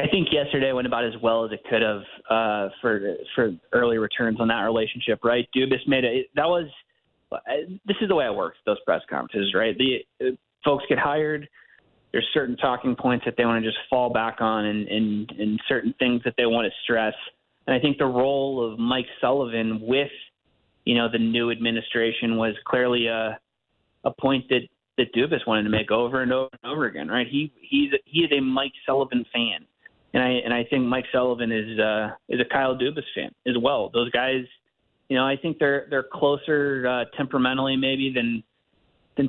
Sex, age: male, 20-39